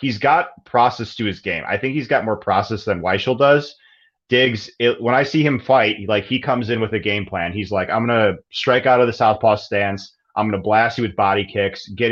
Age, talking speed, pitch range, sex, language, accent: 30-49, 255 wpm, 105-130 Hz, male, English, American